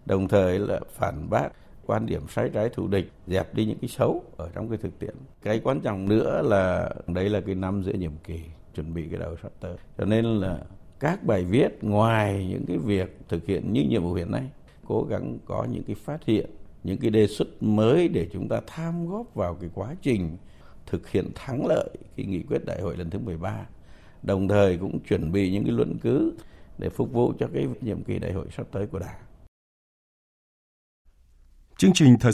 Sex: male